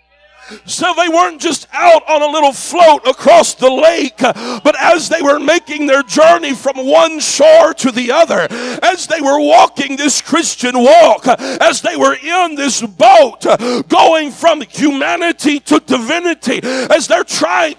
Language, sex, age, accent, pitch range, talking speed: English, male, 50-69, American, 255-335 Hz, 155 wpm